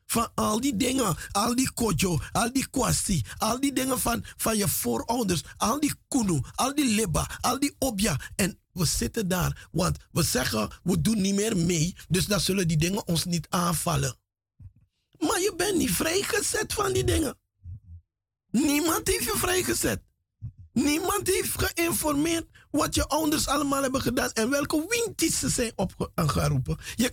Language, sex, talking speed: Dutch, male, 165 wpm